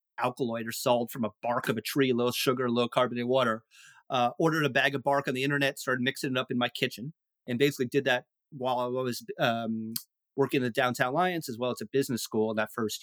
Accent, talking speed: American, 230 wpm